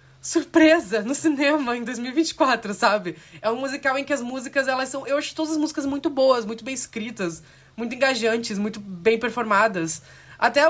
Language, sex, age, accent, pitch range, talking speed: Portuguese, female, 20-39, Brazilian, 170-235 Hz, 175 wpm